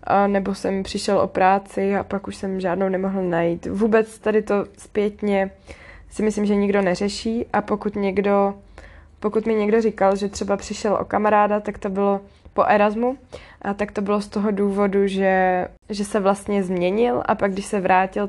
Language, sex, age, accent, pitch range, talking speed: Czech, female, 20-39, native, 190-220 Hz, 185 wpm